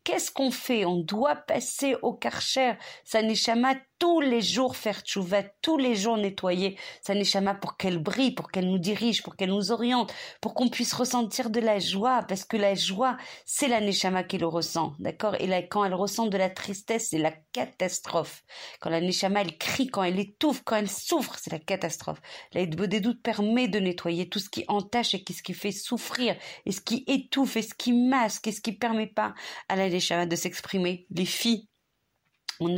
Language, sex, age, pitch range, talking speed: French, female, 40-59, 190-235 Hz, 205 wpm